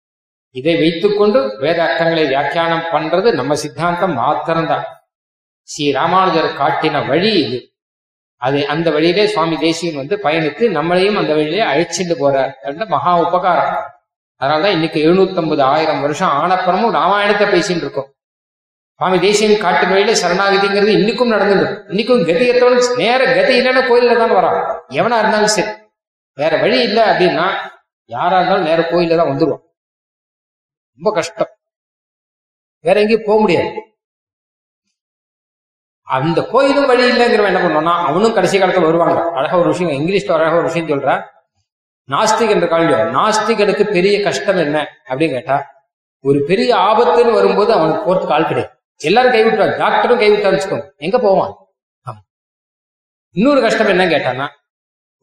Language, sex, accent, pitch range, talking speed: Tamil, male, native, 160-220 Hz, 120 wpm